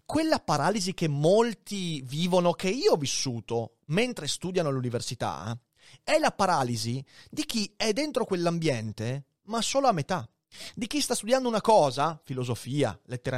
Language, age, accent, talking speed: Italian, 30-49, native, 145 wpm